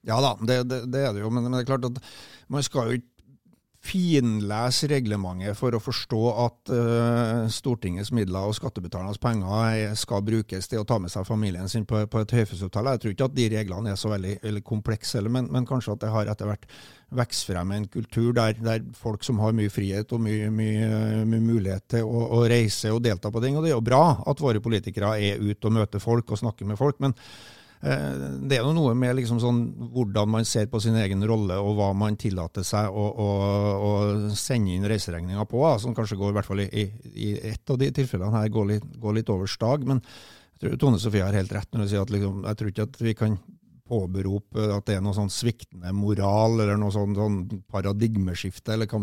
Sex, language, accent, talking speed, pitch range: male, English, Swedish, 220 wpm, 105-120 Hz